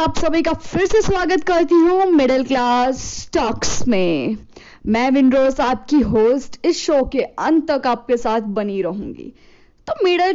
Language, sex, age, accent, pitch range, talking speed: Hindi, female, 10-29, native, 250-315 Hz, 145 wpm